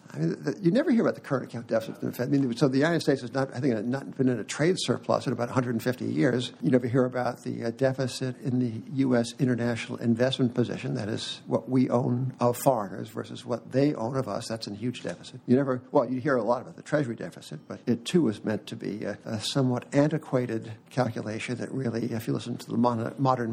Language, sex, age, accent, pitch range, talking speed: English, male, 60-79, American, 115-135 Hz, 225 wpm